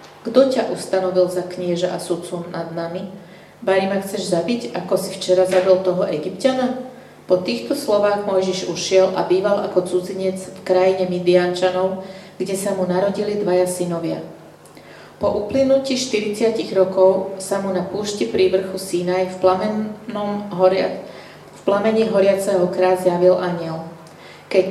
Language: Slovak